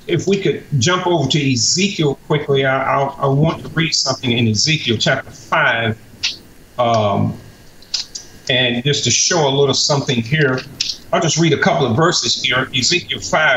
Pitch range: 125-160 Hz